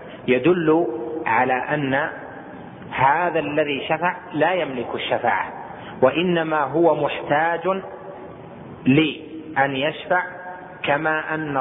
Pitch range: 130-165 Hz